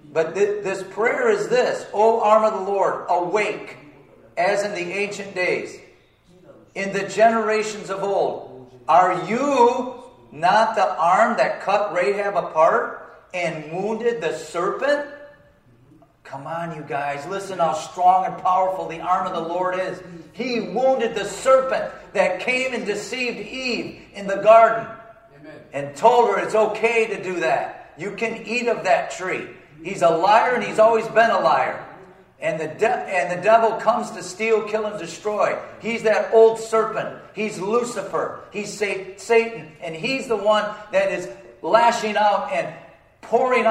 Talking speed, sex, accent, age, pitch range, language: 160 wpm, male, American, 50-69, 175-225 Hz, English